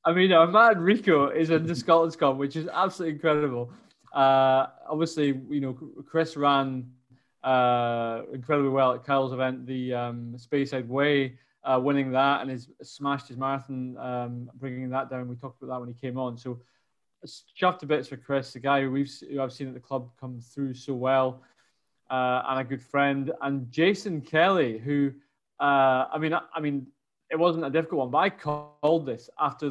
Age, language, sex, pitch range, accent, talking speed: 20-39, English, male, 125-145 Hz, British, 195 wpm